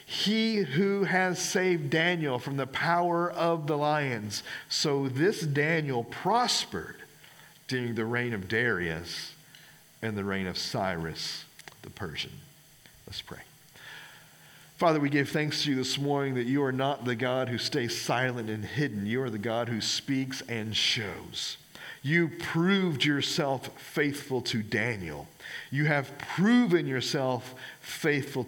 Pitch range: 120-155 Hz